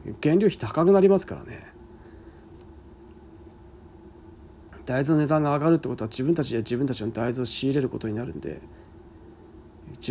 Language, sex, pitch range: Japanese, male, 115-160 Hz